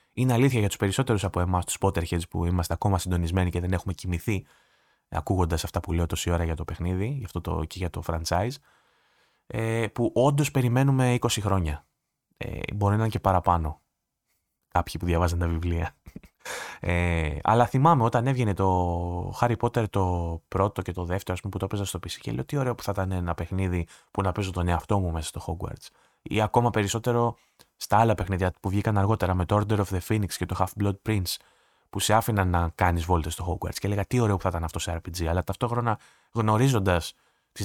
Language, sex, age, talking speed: Greek, male, 20-39, 205 wpm